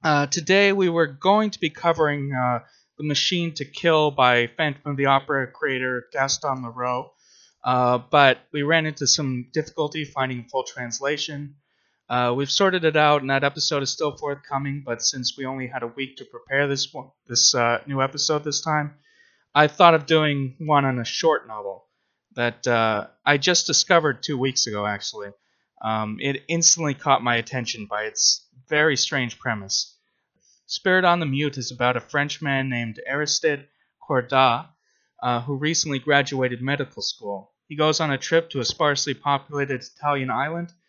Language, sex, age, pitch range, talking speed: English, male, 20-39, 125-155 Hz, 170 wpm